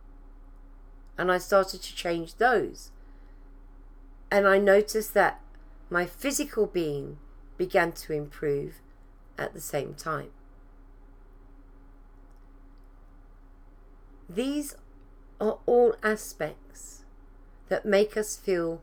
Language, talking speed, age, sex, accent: English, 90 wpm, 40-59, female, British